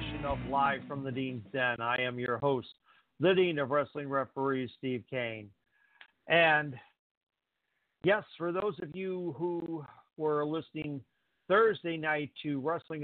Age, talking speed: 50-69, 140 wpm